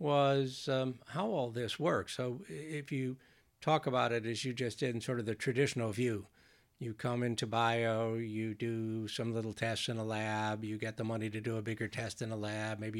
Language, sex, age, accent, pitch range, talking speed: English, male, 60-79, American, 115-135 Hz, 215 wpm